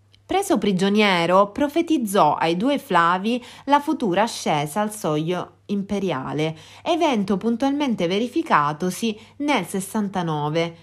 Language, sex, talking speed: Italian, female, 95 wpm